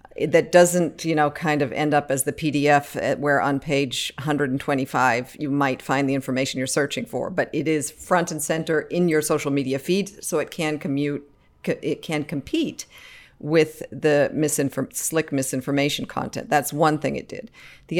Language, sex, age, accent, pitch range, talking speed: English, female, 50-69, American, 140-165 Hz, 180 wpm